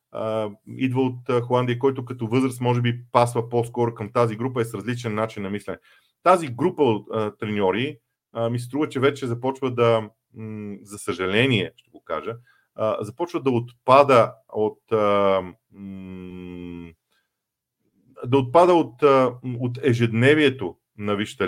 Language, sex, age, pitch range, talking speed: Bulgarian, male, 40-59, 110-135 Hz, 125 wpm